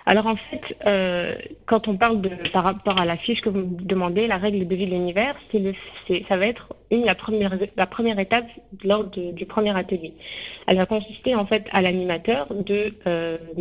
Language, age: French, 30-49